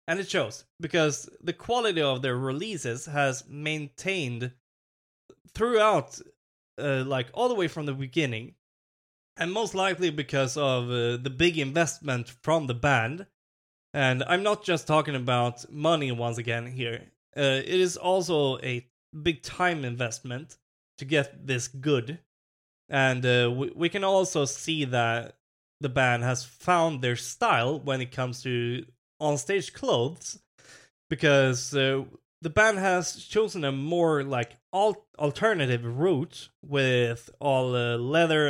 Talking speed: 140 wpm